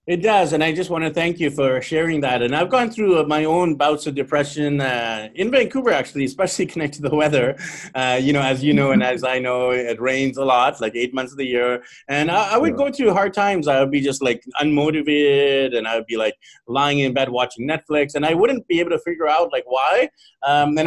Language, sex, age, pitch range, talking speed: English, male, 30-49, 135-170 Hz, 240 wpm